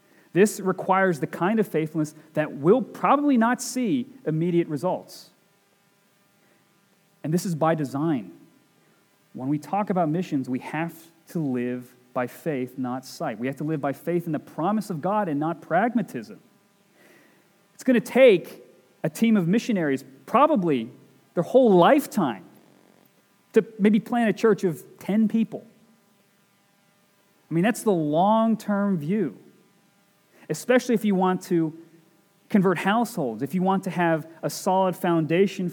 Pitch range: 160-215 Hz